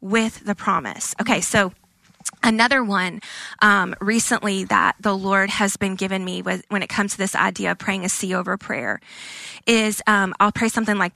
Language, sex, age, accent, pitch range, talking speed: English, female, 20-39, American, 190-230 Hz, 185 wpm